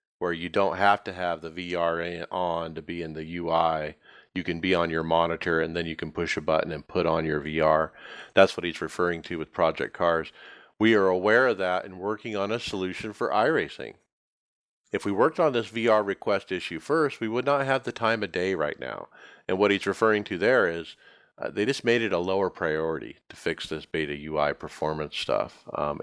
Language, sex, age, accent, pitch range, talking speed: English, male, 40-59, American, 85-115 Hz, 215 wpm